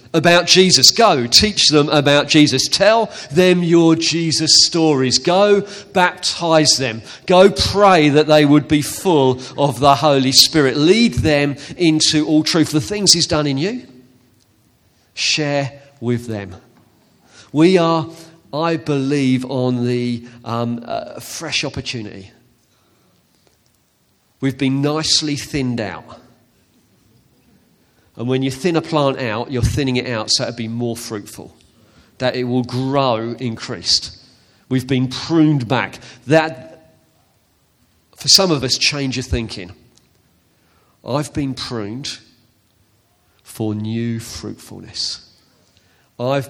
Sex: male